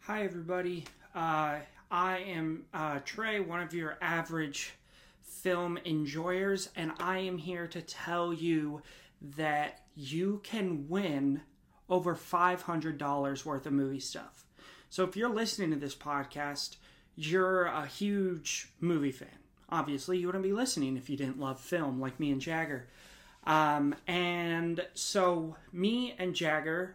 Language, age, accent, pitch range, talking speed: English, 30-49, American, 150-180 Hz, 140 wpm